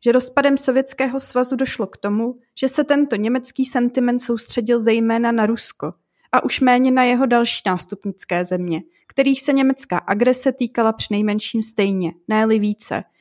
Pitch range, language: 215-255 Hz, Czech